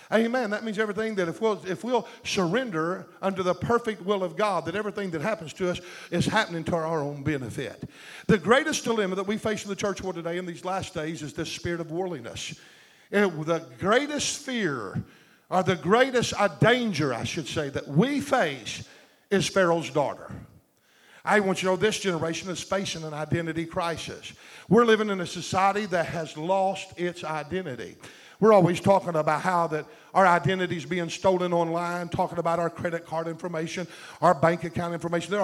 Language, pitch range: English, 165-195 Hz